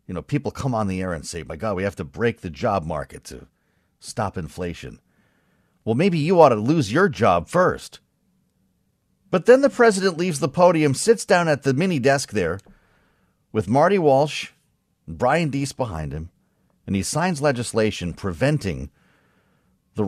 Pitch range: 95-155 Hz